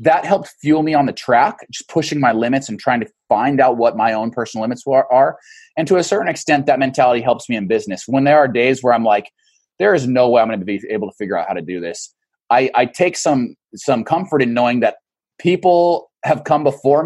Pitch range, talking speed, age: 120-155 Hz, 245 wpm, 20-39